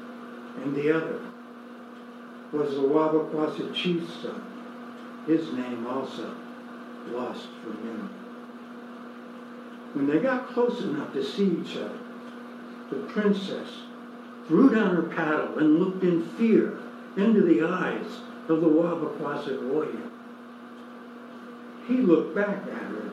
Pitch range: 205-245 Hz